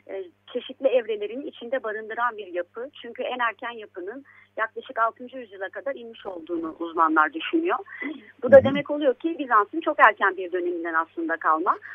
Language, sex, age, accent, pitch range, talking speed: Turkish, female, 40-59, native, 200-315 Hz, 150 wpm